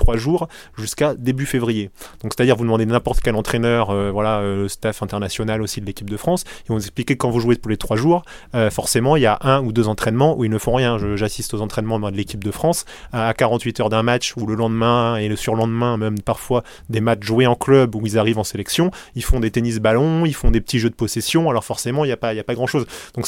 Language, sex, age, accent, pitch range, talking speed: French, male, 20-39, French, 110-130 Hz, 270 wpm